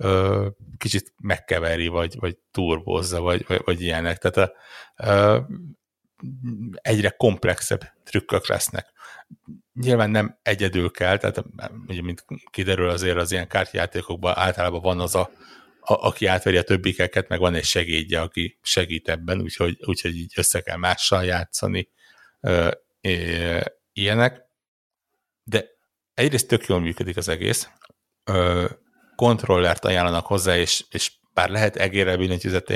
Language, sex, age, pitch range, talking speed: Hungarian, male, 60-79, 90-100 Hz, 120 wpm